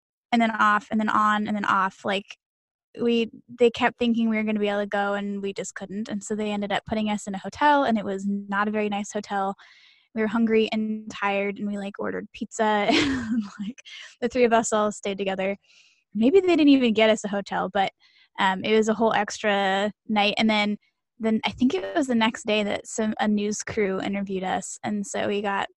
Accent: American